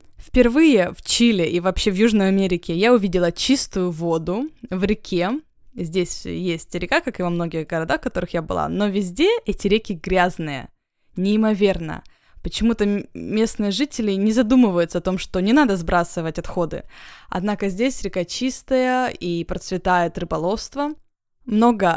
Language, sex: Russian, female